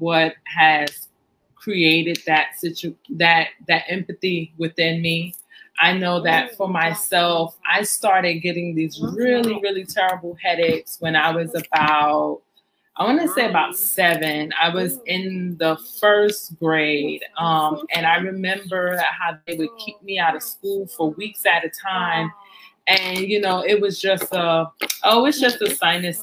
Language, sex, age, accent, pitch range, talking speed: English, female, 20-39, American, 165-195 Hz, 155 wpm